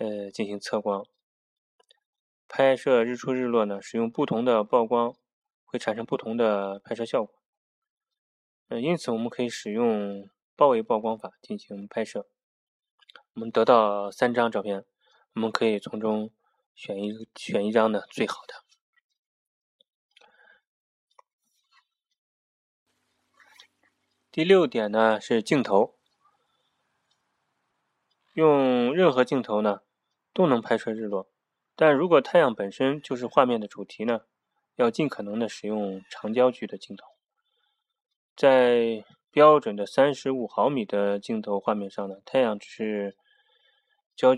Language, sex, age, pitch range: Chinese, male, 20-39, 105-155 Hz